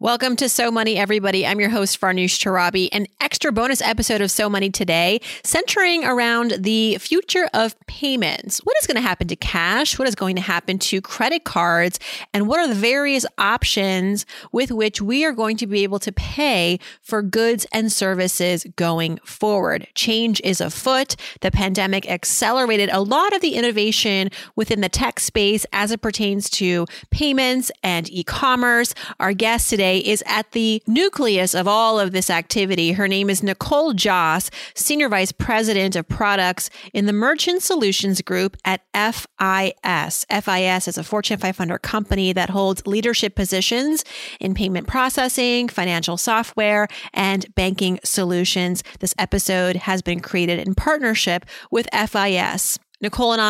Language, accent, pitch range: English, American, 185-230 Hz